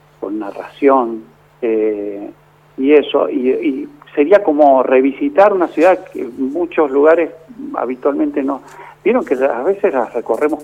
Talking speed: 130 wpm